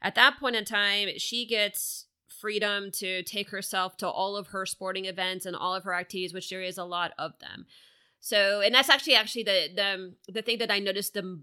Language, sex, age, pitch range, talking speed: English, female, 30-49, 180-210 Hz, 220 wpm